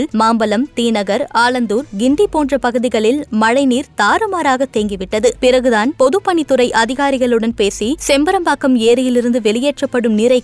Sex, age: female, 20-39